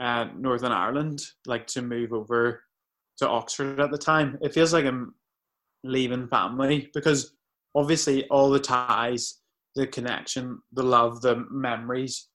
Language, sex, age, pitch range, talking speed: English, male, 20-39, 115-135 Hz, 140 wpm